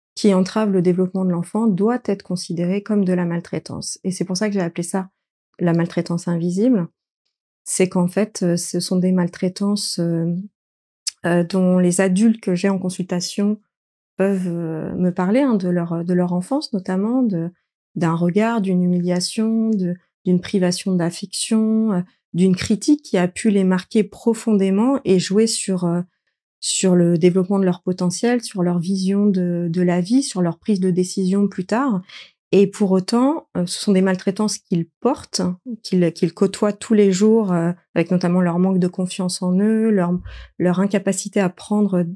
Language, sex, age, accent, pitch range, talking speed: French, female, 30-49, French, 180-210 Hz, 165 wpm